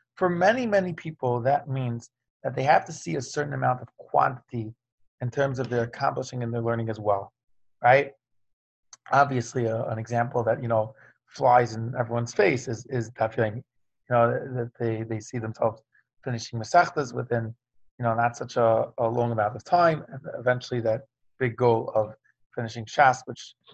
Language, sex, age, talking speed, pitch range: English, male, 30-49, 180 wpm, 115-135 Hz